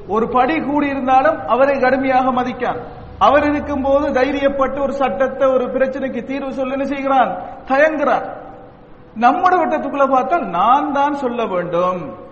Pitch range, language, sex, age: 220-280 Hz, English, male, 50-69